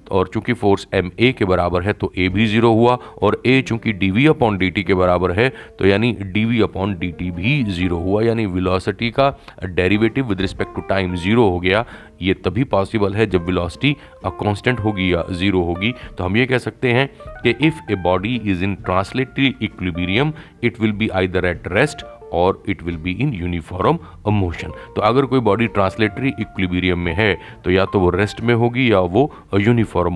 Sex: male